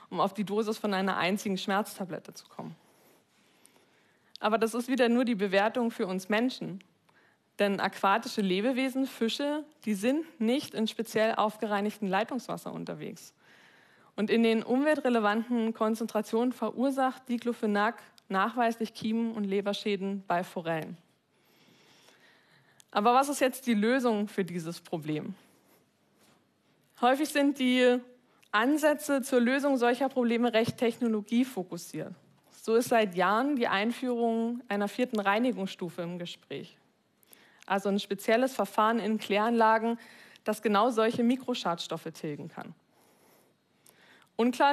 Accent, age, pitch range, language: German, 20-39, 200-245 Hz, German